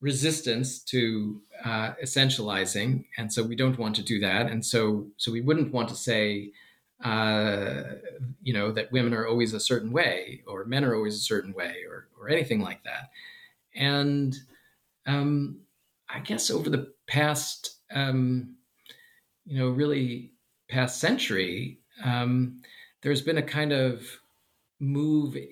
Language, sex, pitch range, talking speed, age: English, male, 115-135 Hz, 145 wpm, 40-59